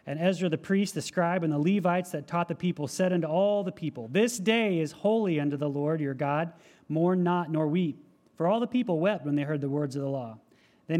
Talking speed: 245 wpm